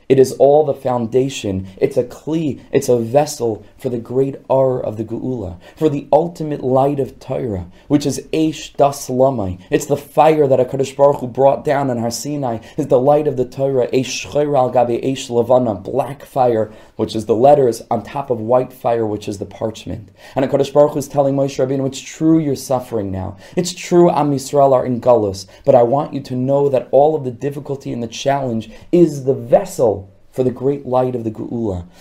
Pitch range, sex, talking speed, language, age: 115-145 Hz, male, 210 wpm, English, 20-39